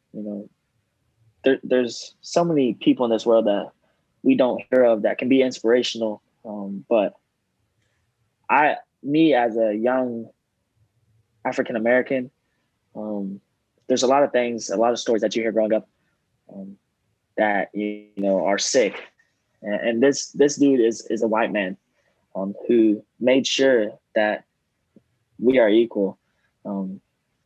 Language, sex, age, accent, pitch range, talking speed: English, male, 20-39, American, 110-125 Hz, 150 wpm